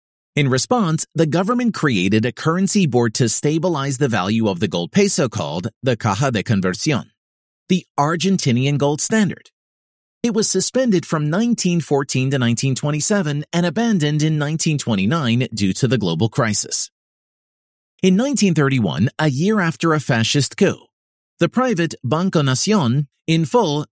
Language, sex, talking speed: English, male, 140 wpm